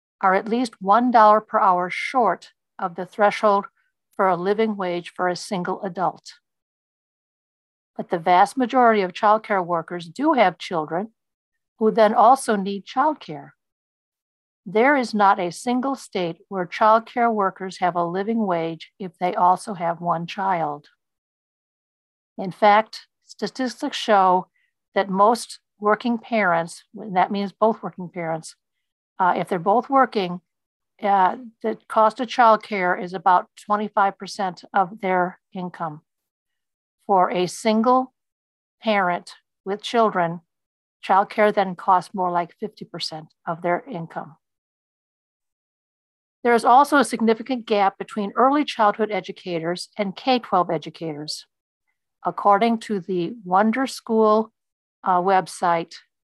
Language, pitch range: English, 180-220 Hz